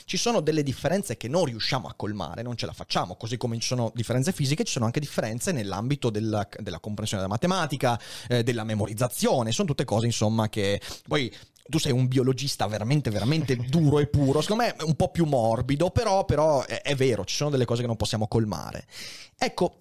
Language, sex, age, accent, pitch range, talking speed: Italian, male, 30-49, native, 110-140 Hz, 205 wpm